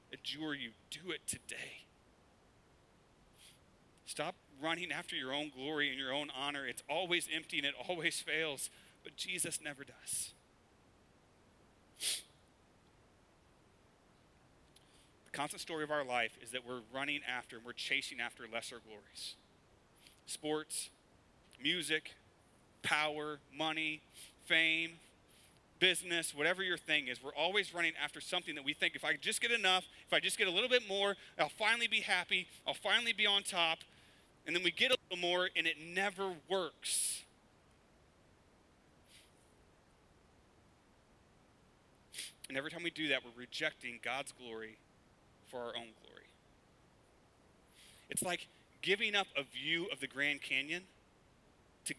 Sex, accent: male, American